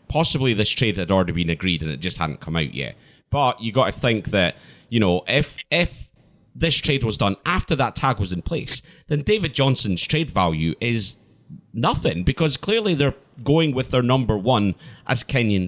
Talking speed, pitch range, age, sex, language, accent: 190 wpm, 100-150 Hz, 30-49, male, English, British